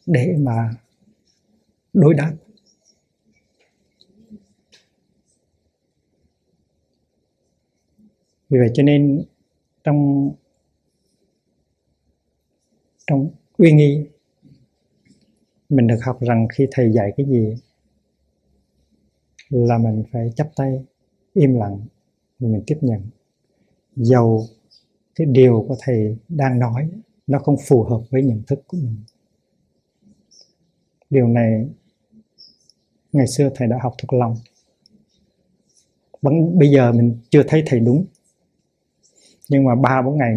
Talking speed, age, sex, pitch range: 105 wpm, 60-79, male, 120-150 Hz